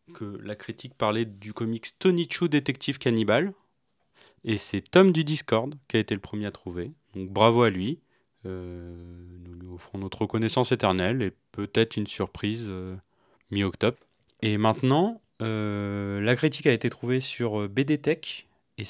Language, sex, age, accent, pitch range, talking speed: French, male, 30-49, French, 100-130 Hz, 165 wpm